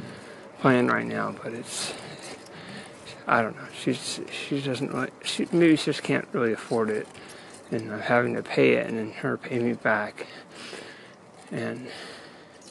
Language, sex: English, male